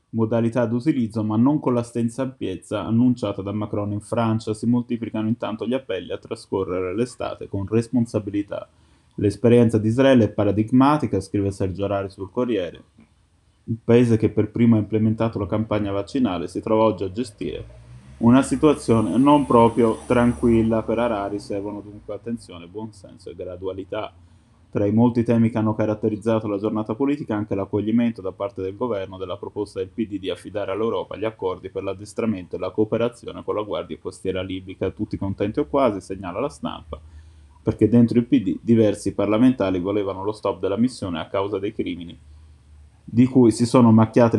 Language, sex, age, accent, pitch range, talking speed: Italian, male, 20-39, native, 100-120 Hz, 165 wpm